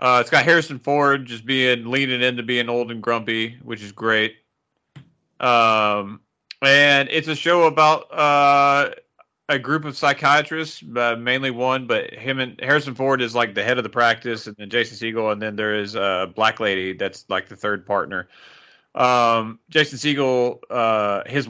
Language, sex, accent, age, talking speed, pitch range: English, male, American, 30-49, 175 wpm, 115-135 Hz